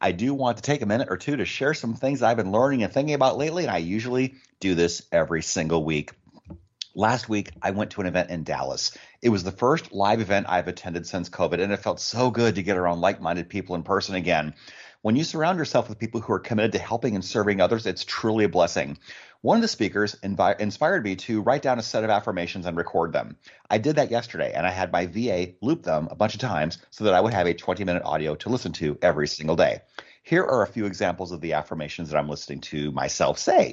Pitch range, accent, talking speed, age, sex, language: 85-105 Hz, American, 245 wpm, 30-49, male, English